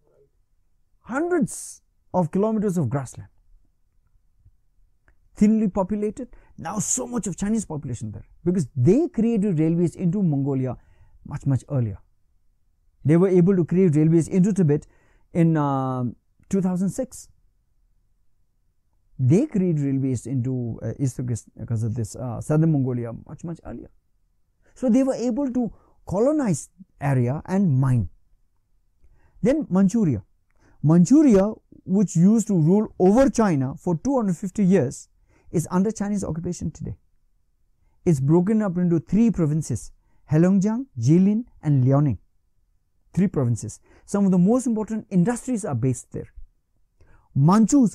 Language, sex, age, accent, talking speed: Hindi, male, 50-69, native, 125 wpm